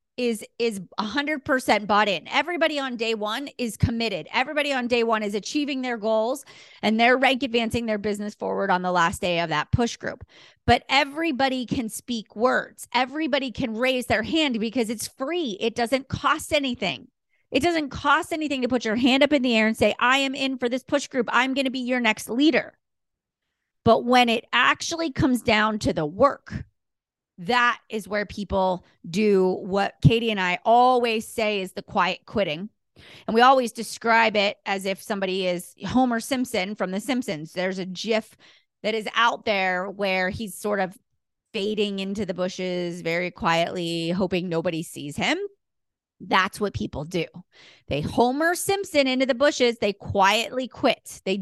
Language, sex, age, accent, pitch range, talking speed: English, female, 30-49, American, 195-260 Hz, 175 wpm